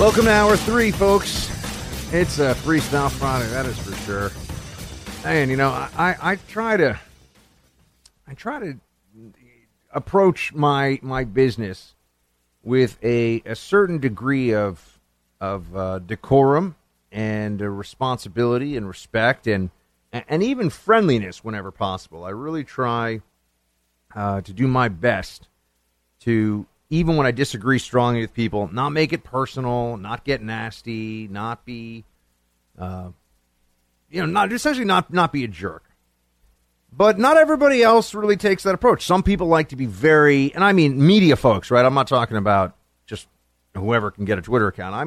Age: 40-59